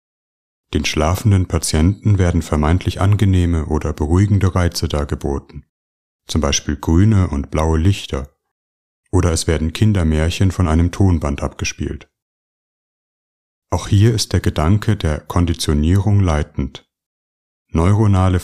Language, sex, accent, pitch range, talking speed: German, male, German, 80-100 Hz, 105 wpm